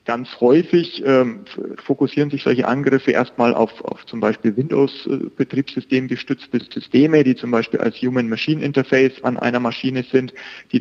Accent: German